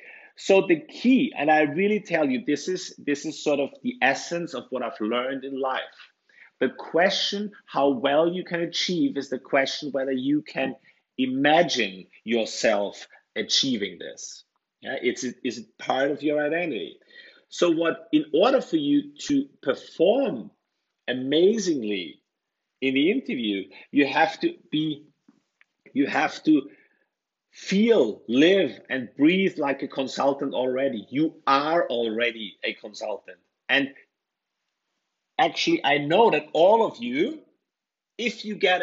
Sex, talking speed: male, 140 wpm